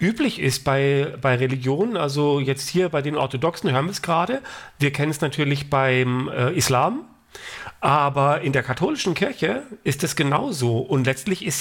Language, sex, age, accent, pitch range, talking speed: English, male, 40-59, German, 135-185 Hz, 170 wpm